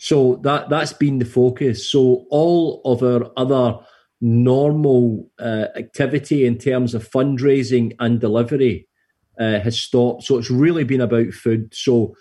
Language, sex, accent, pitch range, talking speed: English, male, British, 120-145 Hz, 145 wpm